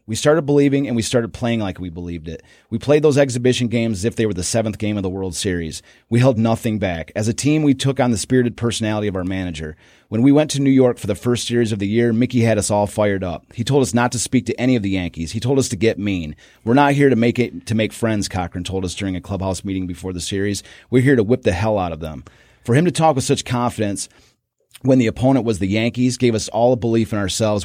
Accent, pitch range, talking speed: American, 95-120 Hz, 275 wpm